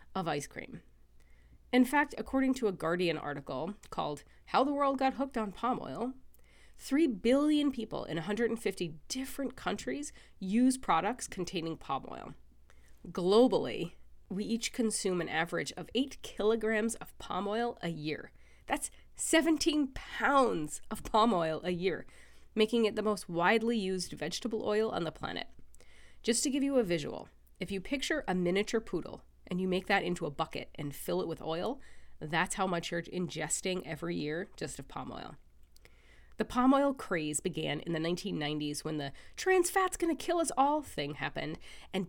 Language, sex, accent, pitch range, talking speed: English, female, American, 160-240 Hz, 170 wpm